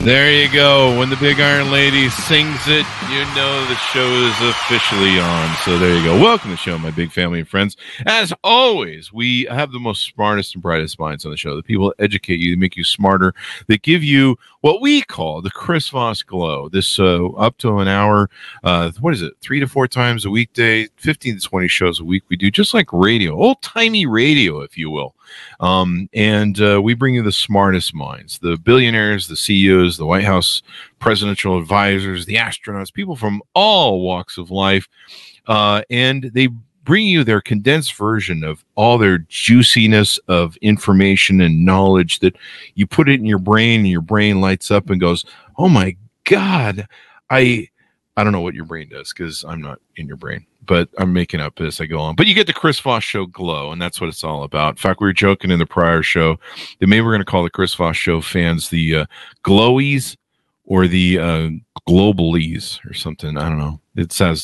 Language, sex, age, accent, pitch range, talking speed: English, male, 50-69, American, 90-125 Hz, 210 wpm